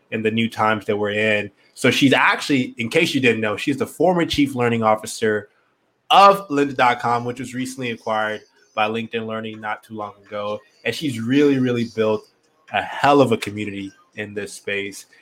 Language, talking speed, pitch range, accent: English, 185 wpm, 110-135 Hz, American